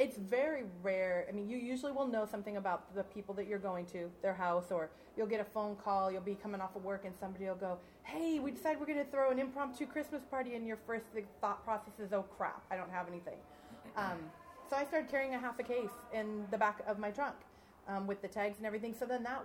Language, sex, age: English, female, 30-49